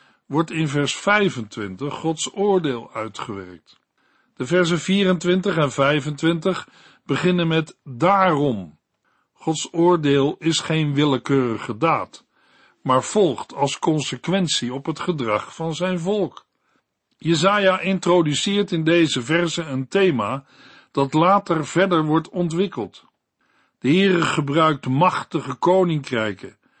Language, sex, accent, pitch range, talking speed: Dutch, male, Dutch, 140-175 Hz, 105 wpm